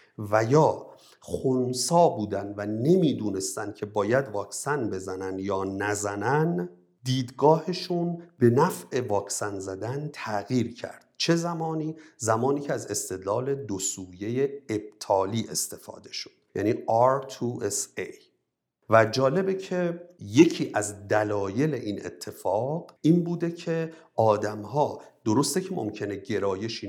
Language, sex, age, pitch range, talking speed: Persian, male, 50-69, 100-155 Hz, 105 wpm